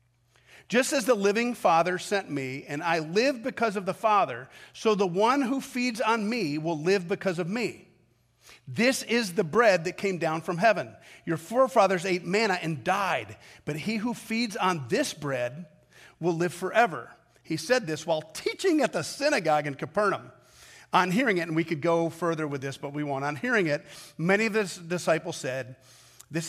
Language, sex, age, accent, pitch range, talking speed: English, male, 40-59, American, 125-195 Hz, 190 wpm